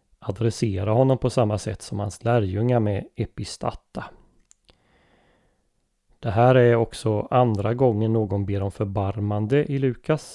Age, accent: 30-49, native